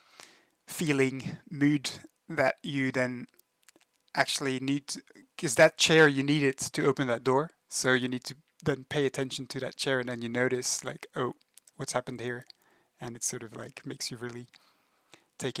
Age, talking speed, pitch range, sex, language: 20-39, 175 wpm, 130-155 Hz, male, English